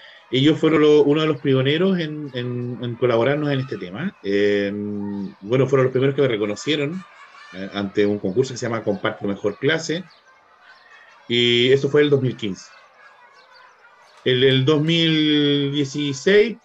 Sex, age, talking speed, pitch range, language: male, 40-59, 150 wpm, 125-150 Hz, Spanish